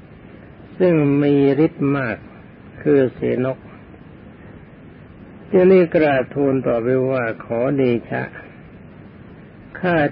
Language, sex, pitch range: Thai, male, 125-155 Hz